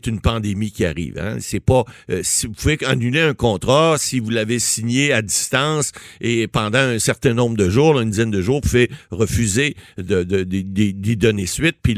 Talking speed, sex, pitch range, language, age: 215 wpm, male, 100-135 Hz, French, 50-69